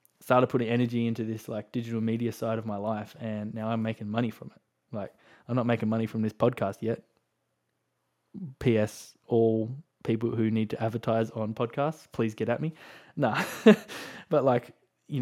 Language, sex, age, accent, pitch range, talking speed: English, male, 20-39, Australian, 110-120 Hz, 175 wpm